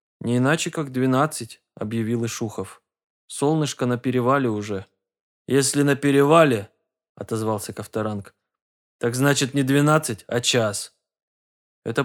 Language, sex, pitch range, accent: Russian, male, 110-140 Hz, native